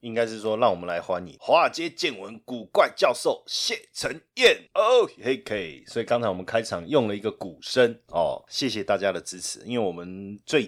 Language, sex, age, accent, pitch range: Chinese, male, 30-49, native, 95-135 Hz